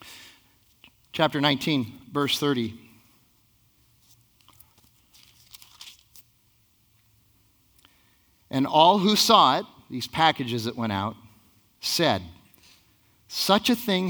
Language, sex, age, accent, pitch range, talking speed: English, male, 40-59, American, 105-145 Hz, 75 wpm